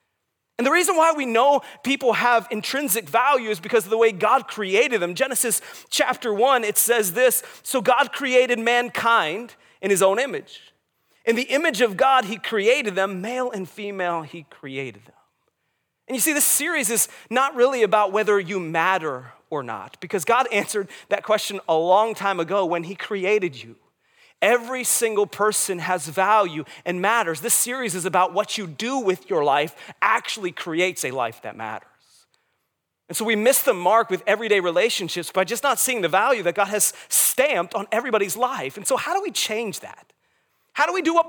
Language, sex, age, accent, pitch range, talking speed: English, male, 30-49, American, 195-255 Hz, 190 wpm